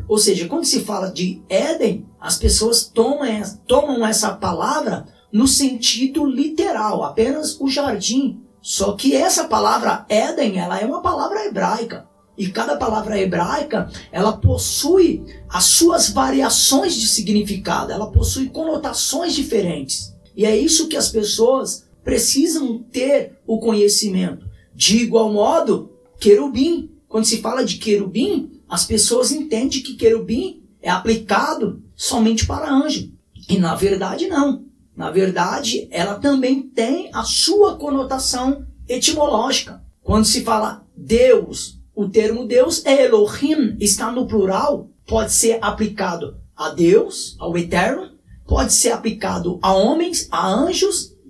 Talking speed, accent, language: 125 wpm, Brazilian, Portuguese